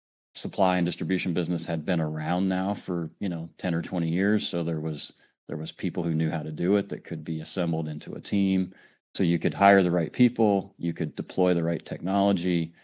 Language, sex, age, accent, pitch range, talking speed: English, male, 40-59, American, 80-90 Hz, 220 wpm